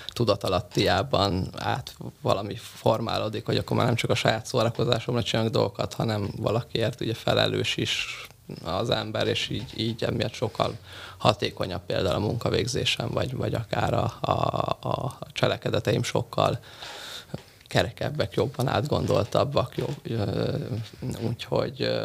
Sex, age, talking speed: male, 20-39, 115 wpm